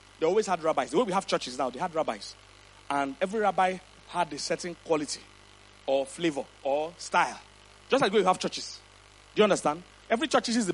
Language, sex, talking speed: English, male, 210 wpm